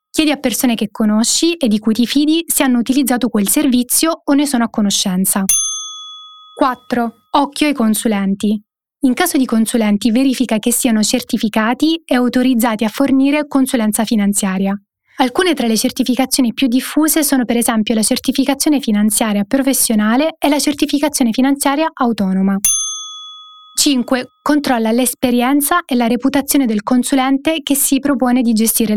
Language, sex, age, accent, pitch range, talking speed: Italian, female, 20-39, native, 225-285 Hz, 145 wpm